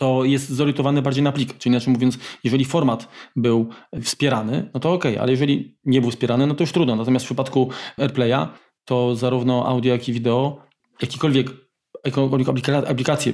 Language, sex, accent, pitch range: Polish, male, native, 120-135 Hz